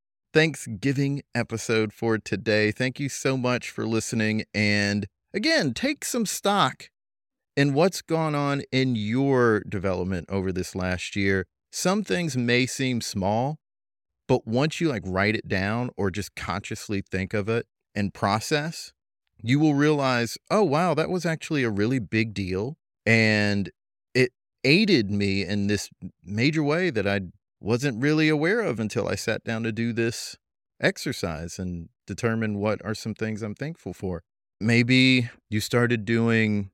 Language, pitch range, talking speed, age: English, 100-145 Hz, 150 wpm, 30-49